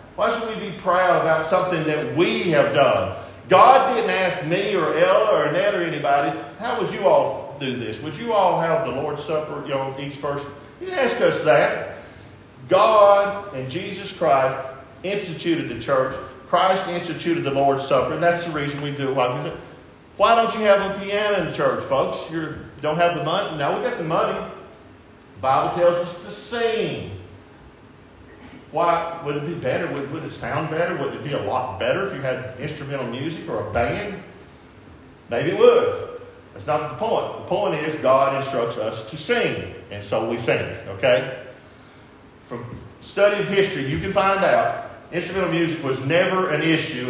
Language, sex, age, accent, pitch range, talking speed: English, male, 50-69, American, 140-185 Hz, 185 wpm